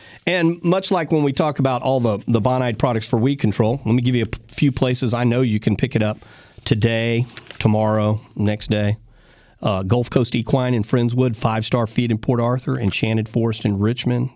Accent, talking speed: American, 205 wpm